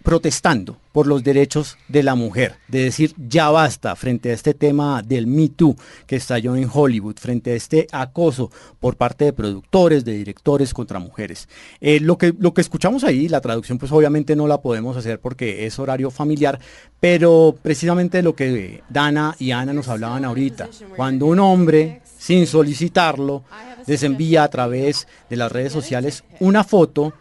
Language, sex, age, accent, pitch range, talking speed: Spanish, male, 40-59, Colombian, 130-185 Hz, 170 wpm